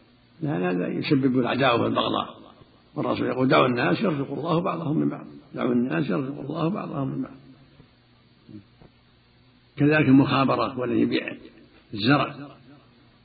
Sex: male